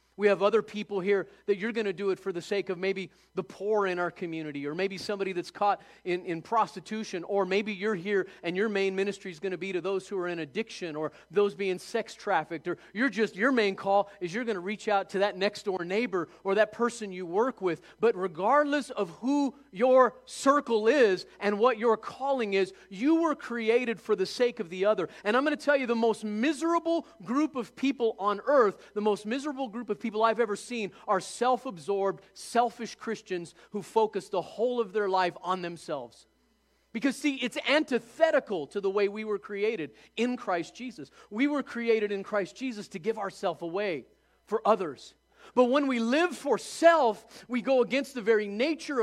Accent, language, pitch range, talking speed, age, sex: American, English, 195-245 Hz, 205 wpm, 40-59, male